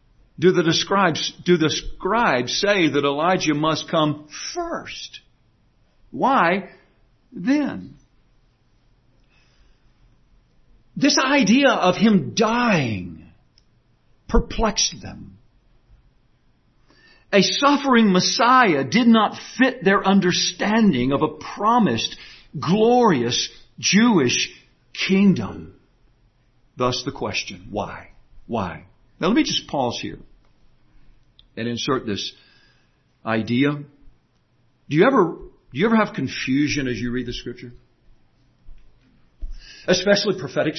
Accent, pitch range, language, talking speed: American, 125-205 Hz, English, 95 wpm